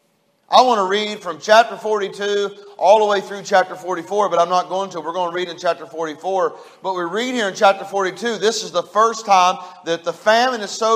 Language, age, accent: English, 40-59, American